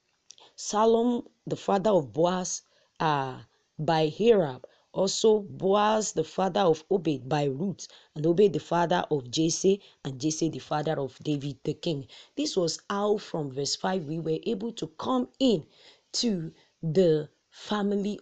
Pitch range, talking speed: 160-215 Hz, 150 wpm